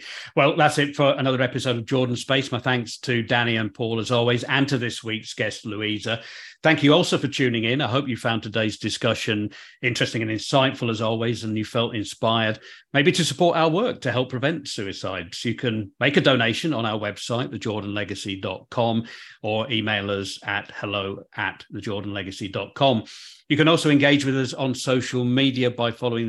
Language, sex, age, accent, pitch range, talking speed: English, male, 40-59, British, 110-135 Hz, 185 wpm